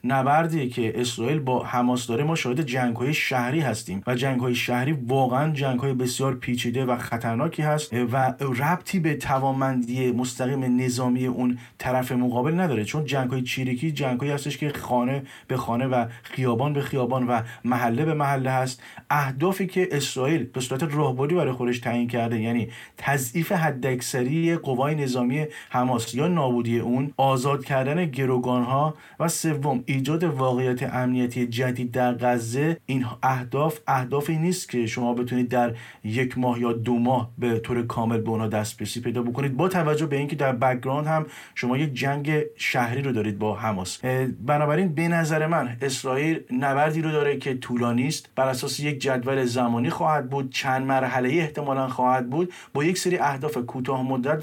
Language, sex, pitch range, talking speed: English, male, 125-145 Hz, 165 wpm